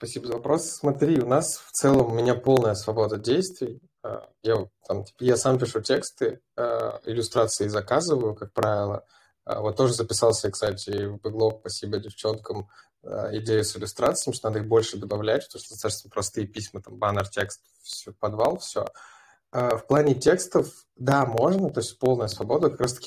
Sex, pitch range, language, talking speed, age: male, 105-125 Hz, Russian, 160 wpm, 20-39